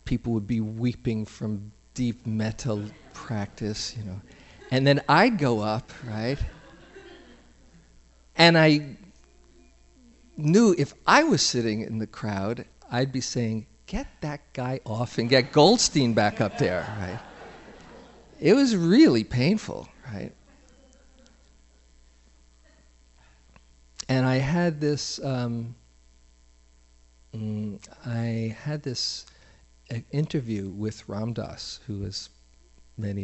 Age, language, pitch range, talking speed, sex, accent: 50-69, English, 95-120 Hz, 110 wpm, male, American